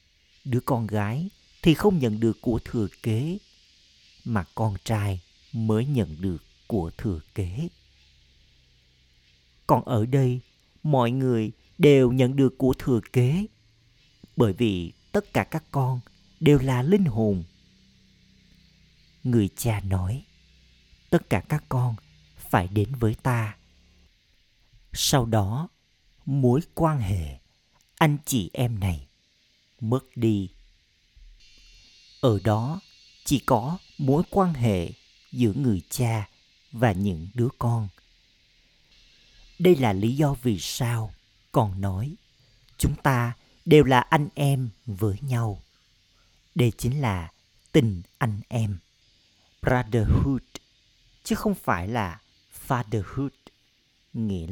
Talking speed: 115 wpm